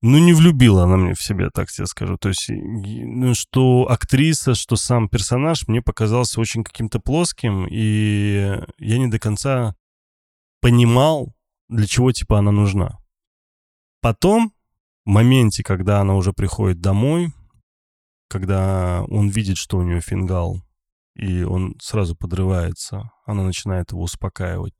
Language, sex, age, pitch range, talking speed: Russian, male, 20-39, 90-115 Hz, 135 wpm